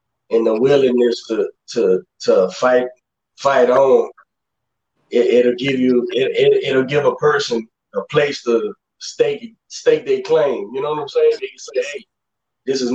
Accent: American